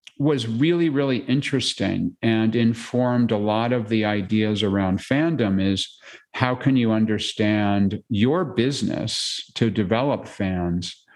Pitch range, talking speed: 100-120 Hz, 125 wpm